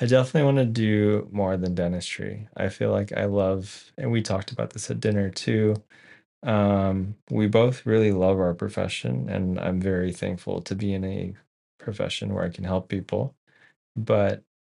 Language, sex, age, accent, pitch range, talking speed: English, male, 20-39, American, 90-105 Hz, 175 wpm